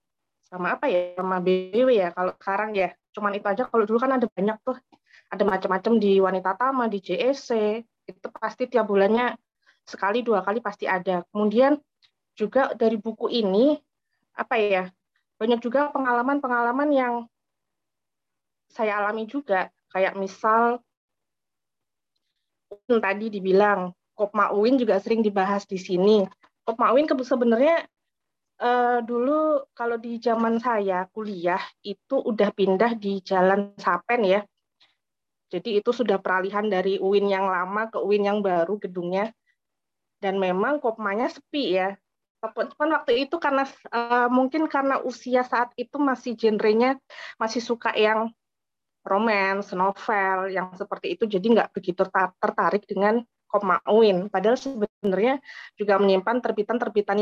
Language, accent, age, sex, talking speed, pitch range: Indonesian, native, 20-39, female, 130 wpm, 195-240 Hz